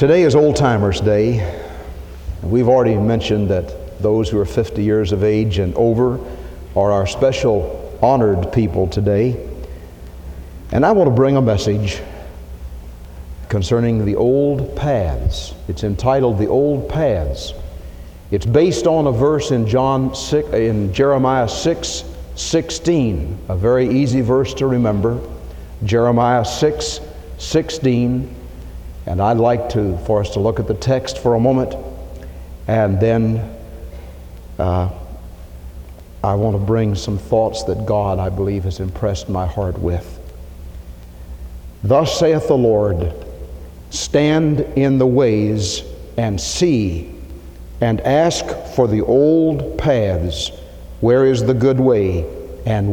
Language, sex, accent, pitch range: English, male, American, 75-125 Hz